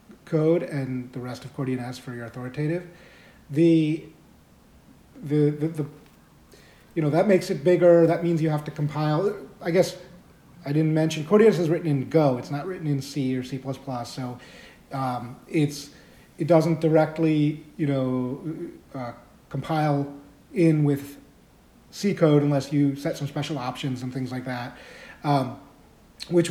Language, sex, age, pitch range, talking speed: English, male, 40-59, 130-165 Hz, 155 wpm